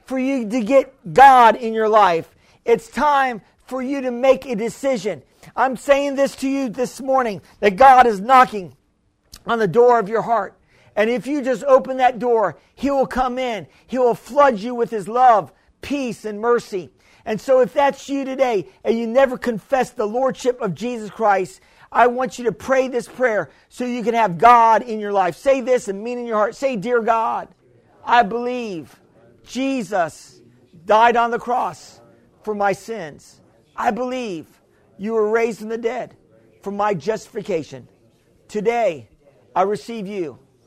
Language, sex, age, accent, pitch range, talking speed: English, male, 50-69, American, 170-250 Hz, 180 wpm